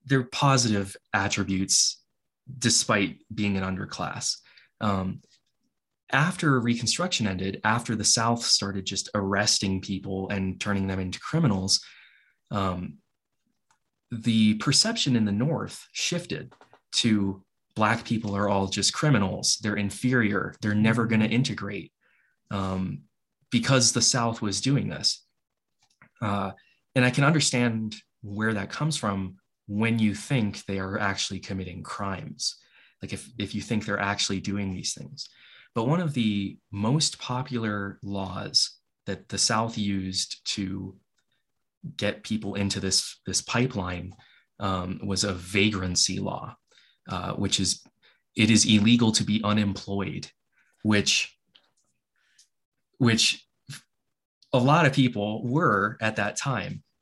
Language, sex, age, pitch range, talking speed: English, male, 20-39, 100-120 Hz, 125 wpm